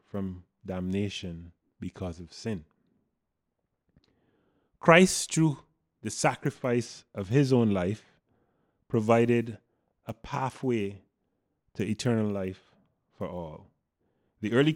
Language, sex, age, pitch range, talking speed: English, male, 30-49, 95-130 Hz, 95 wpm